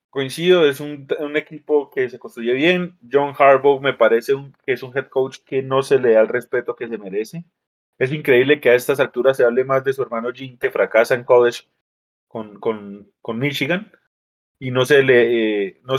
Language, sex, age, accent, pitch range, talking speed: Spanish, male, 30-49, Colombian, 115-150 Hz, 210 wpm